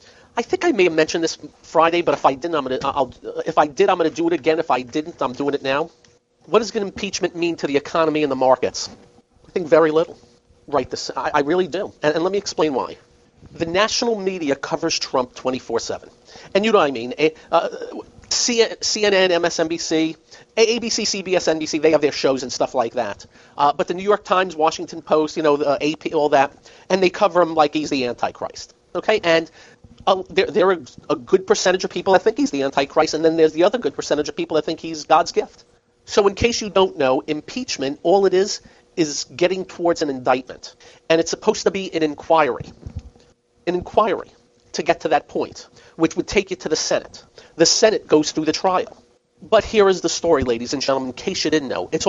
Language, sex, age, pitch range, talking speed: English, male, 40-59, 150-190 Hz, 215 wpm